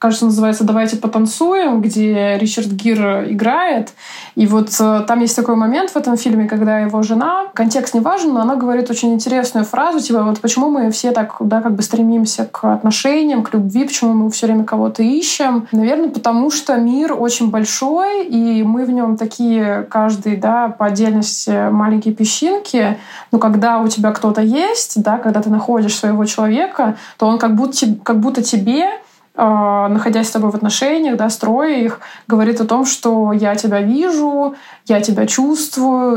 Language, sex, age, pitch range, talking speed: Russian, female, 20-39, 215-250 Hz, 170 wpm